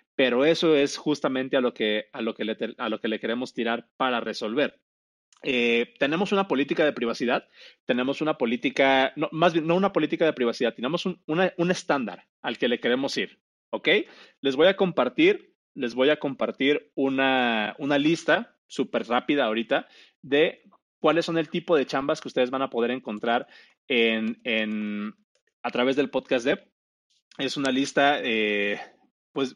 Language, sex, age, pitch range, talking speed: Spanish, male, 30-49, 120-170 Hz, 175 wpm